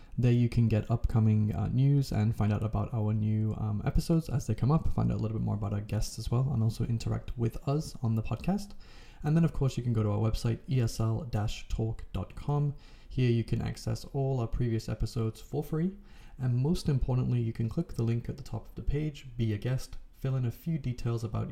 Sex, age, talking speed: male, 20-39, 230 wpm